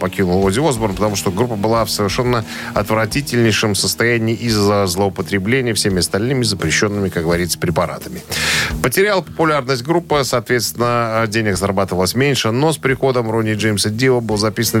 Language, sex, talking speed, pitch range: Russian, male, 140 wpm, 95-120 Hz